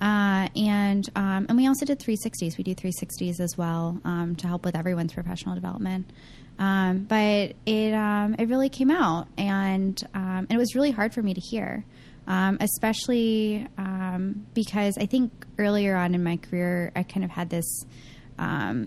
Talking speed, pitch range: 185 wpm, 175-200 Hz